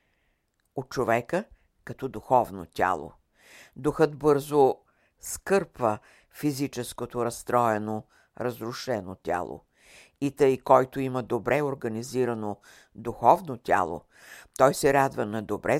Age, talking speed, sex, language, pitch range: 60-79, 95 wpm, female, Bulgarian, 110-140 Hz